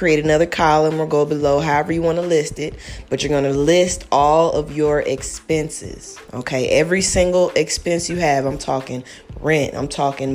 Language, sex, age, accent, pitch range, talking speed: English, female, 20-39, American, 130-155 Hz, 185 wpm